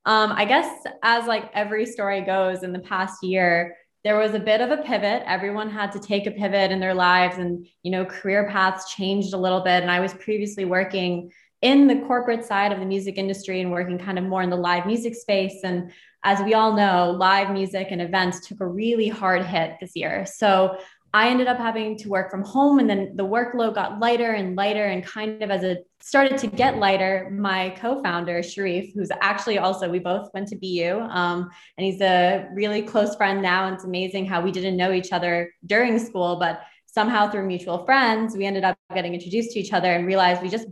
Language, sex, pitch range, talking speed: English, female, 185-215 Hz, 220 wpm